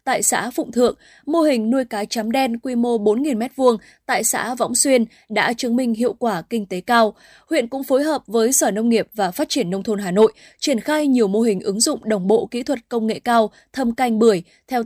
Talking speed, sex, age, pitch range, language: 235 wpm, female, 20-39, 215-260 Hz, Vietnamese